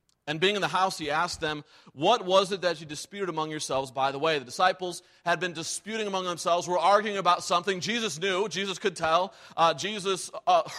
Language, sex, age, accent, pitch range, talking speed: English, male, 30-49, American, 140-175 Hz, 210 wpm